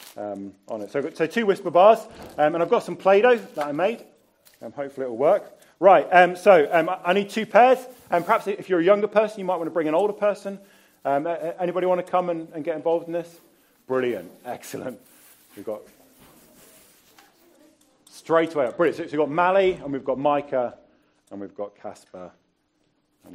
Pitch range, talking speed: 135-190 Hz, 205 wpm